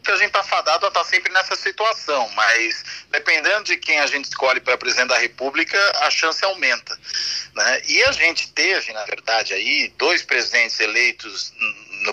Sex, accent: male, Brazilian